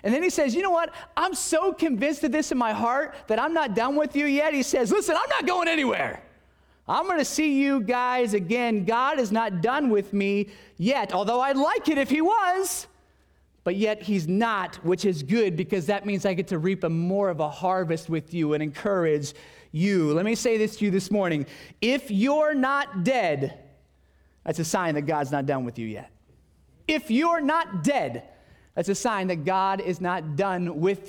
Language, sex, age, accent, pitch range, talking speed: English, male, 30-49, American, 160-250 Hz, 205 wpm